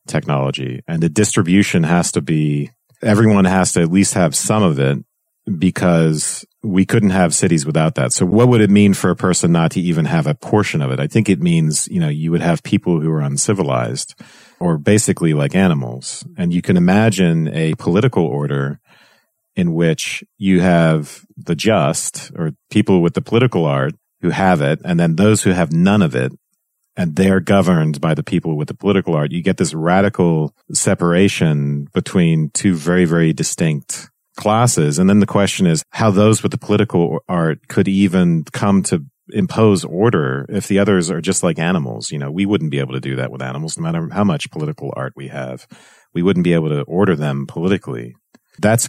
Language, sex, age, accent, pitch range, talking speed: English, male, 40-59, American, 75-105 Hz, 195 wpm